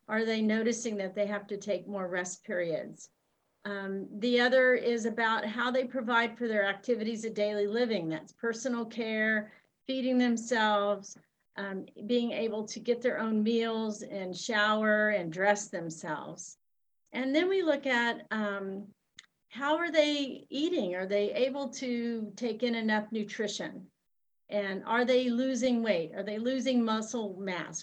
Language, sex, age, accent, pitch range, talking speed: English, female, 40-59, American, 200-245 Hz, 155 wpm